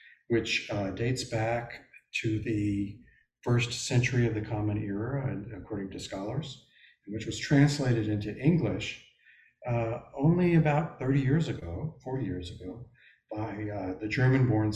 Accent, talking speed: American, 140 wpm